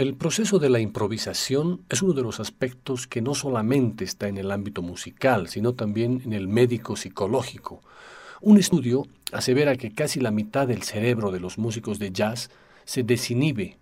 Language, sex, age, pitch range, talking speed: Spanish, male, 50-69, 110-140 Hz, 175 wpm